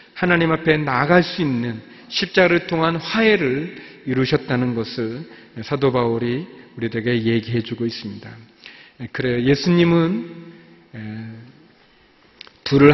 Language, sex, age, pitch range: Korean, male, 40-59, 120-160 Hz